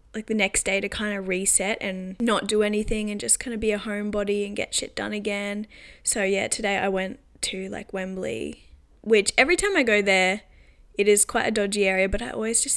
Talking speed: 225 wpm